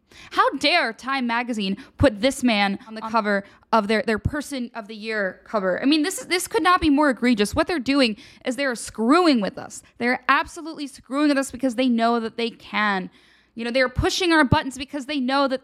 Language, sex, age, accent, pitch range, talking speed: English, female, 10-29, American, 230-295 Hz, 220 wpm